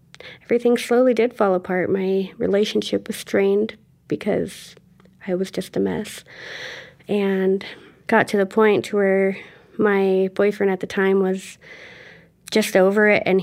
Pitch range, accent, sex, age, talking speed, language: 185-210 Hz, American, female, 30-49, 140 wpm, English